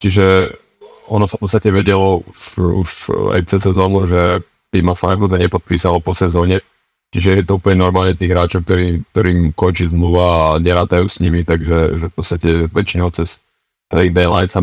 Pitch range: 90-95 Hz